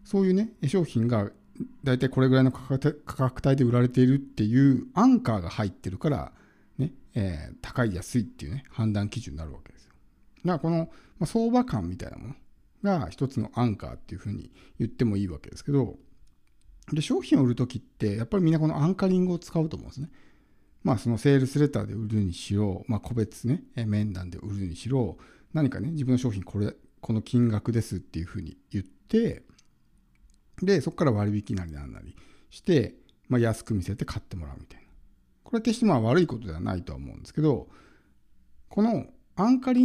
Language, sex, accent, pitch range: Japanese, male, native, 100-160 Hz